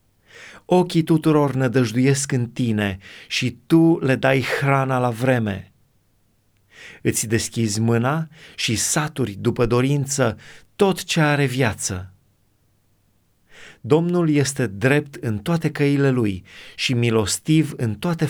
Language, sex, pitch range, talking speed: Romanian, male, 110-150 Hz, 110 wpm